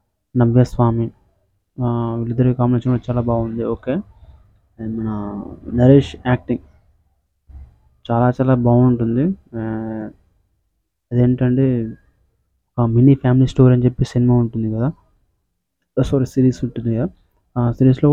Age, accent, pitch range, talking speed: 20-39, native, 100-130 Hz, 100 wpm